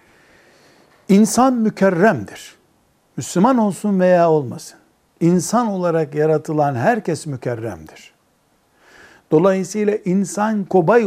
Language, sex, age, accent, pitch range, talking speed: Turkish, male, 60-79, native, 145-205 Hz, 75 wpm